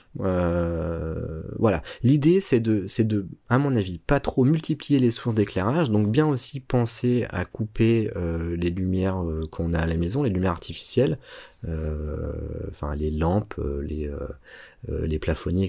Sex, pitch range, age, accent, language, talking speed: male, 90-120 Hz, 30-49, French, French, 160 wpm